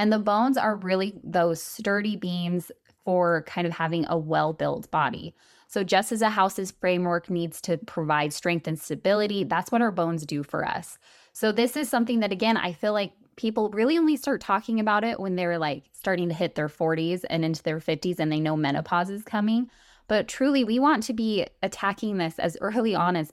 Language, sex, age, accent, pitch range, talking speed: English, female, 20-39, American, 160-210 Hz, 205 wpm